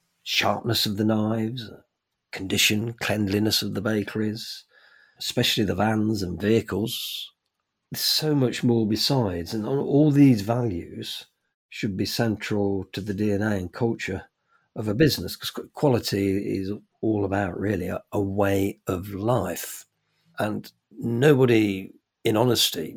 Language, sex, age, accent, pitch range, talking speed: English, male, 50-69, British, 95-115 Hz, 125 wpm